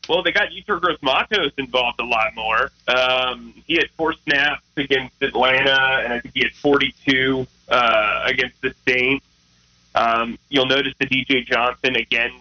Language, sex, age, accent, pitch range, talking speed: English, male, 30-49, American, 115-135 Hz, 160 wpm